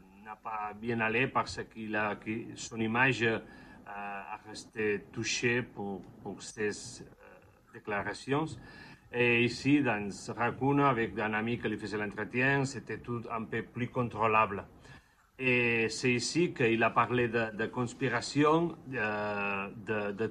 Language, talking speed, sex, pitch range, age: French, 130 wpm, male, 110-125 Hz, 40-59